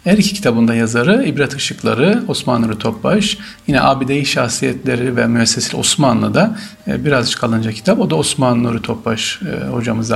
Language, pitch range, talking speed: Turkish, 115-180 Hz, 140 wpm